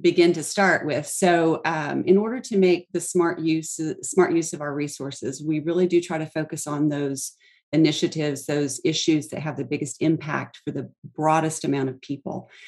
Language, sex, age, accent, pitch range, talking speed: English, female, 40-59, American, 140-165 Hz, 190 wpm